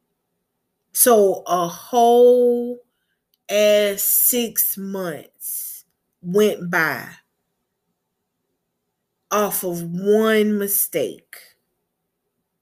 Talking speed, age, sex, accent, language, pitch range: 55 wpm, 20-39, female, American, English, 175-215 Hz